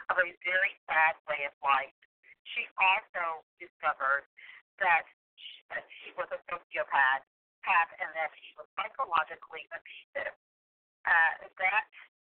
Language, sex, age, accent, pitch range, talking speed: English, female, 40-59, American, 155-190 Hz, 120 wpm